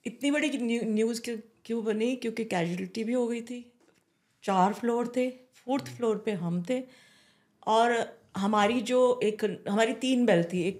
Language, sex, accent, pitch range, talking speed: Hindi, female, native, 190-235 Hz, 155 wpm